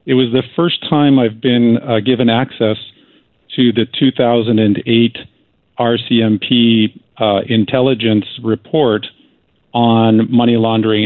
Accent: American